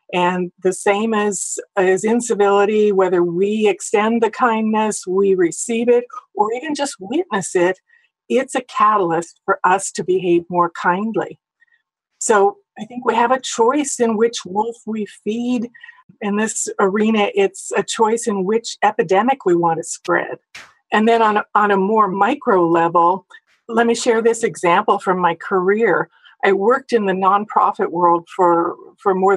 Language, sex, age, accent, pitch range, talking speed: English, female, 50-69, American, 185-235 Hz, 155 wpm